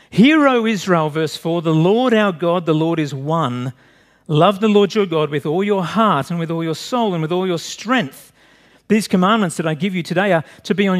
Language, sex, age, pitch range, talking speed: English, male, 50-69, 150-215 Hz, 235 wpm